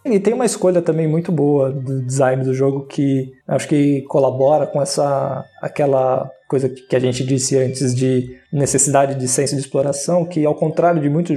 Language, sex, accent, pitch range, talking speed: Portuguese, male, Brazilian, 135-170 Hz, 180 wpm